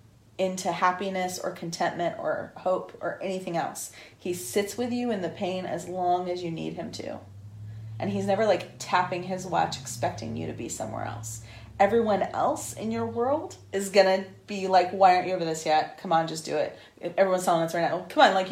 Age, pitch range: 30-49, 170-205 Hz